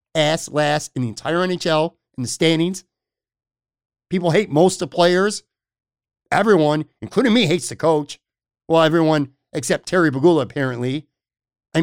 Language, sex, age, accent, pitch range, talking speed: English, male, 50-69, American, 135-185 Hz, 140 wpm